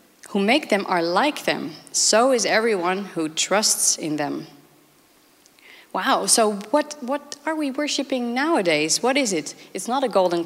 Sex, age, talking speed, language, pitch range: female, 30-49, 160 wpm, English, 195-265 Hz